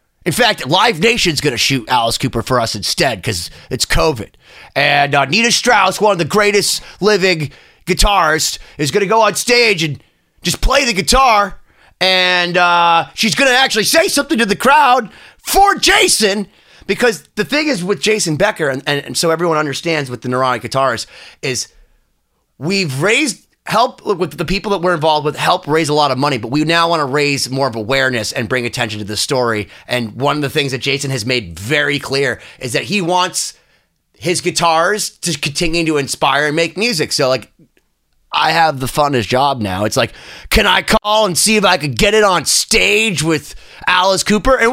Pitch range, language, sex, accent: 150-240 Hz, English, male, American